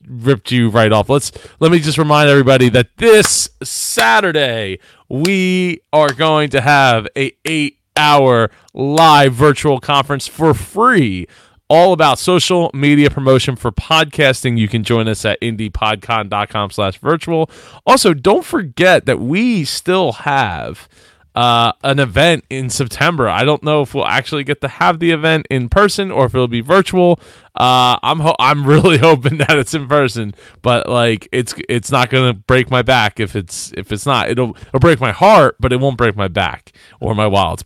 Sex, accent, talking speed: male, American, 175 wpm